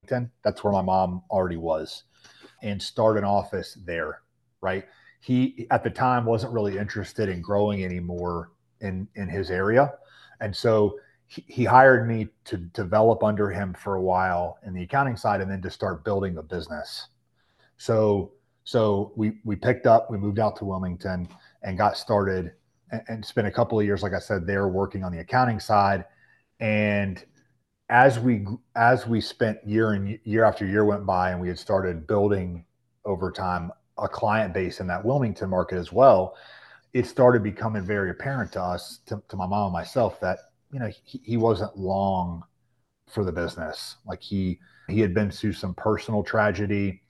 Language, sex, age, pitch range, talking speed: English, male, 30-49, 95-115 Hz, 180 wpm